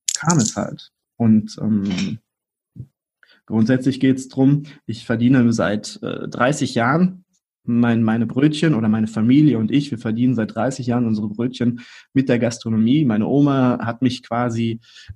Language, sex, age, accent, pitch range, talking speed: German, male, 20-39, German, 115-130 Hz, 150 wpm